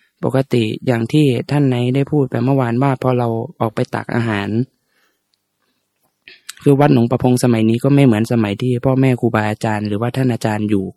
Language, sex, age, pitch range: Thai, male, 20-39, 115-135 Hz